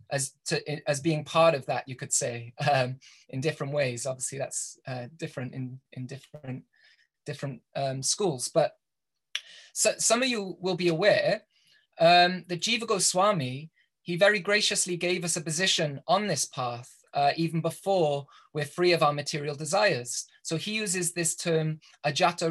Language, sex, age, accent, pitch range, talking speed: English, male, 20-39, British, 145-185 Hz, 165 wpm